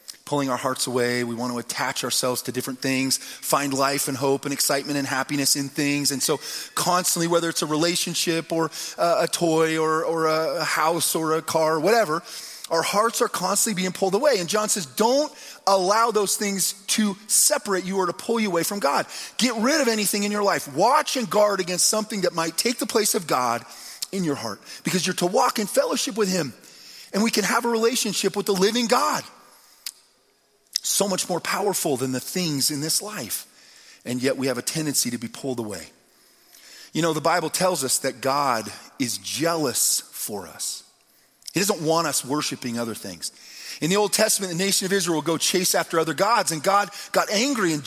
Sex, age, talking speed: male, 30-49, 205 wpm